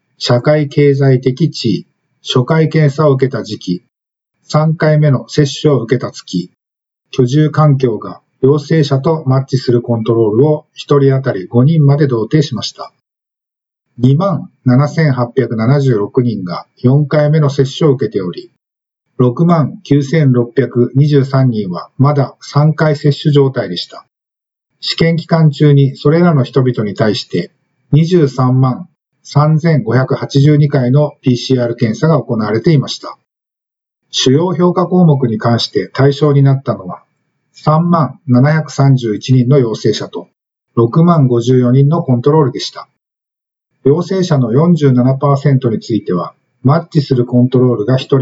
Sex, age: male, 50-69